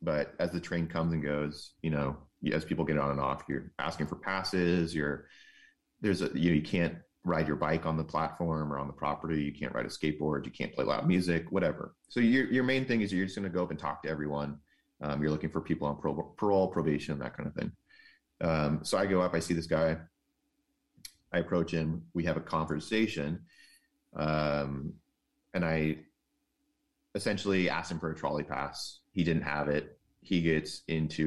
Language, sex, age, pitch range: English, male, 30-49, 75-90 Hz